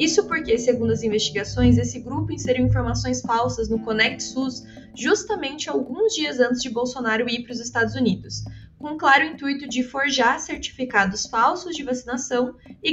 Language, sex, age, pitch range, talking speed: Portuguese, female, 20-39, 220-270 Hz, 160 wpm